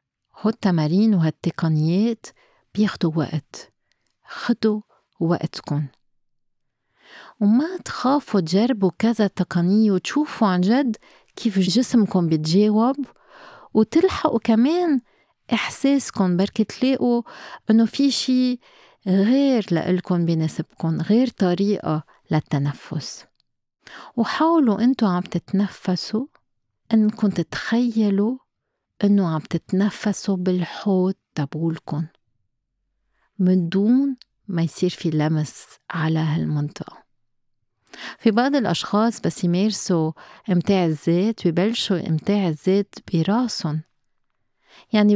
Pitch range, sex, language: 160-220 Hz, female, Arabic